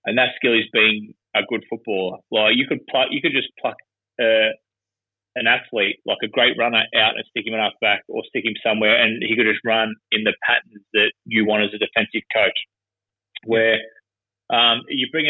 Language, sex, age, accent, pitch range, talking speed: English, male, 20-39, Australian, 105-120 Hz, 210 wpm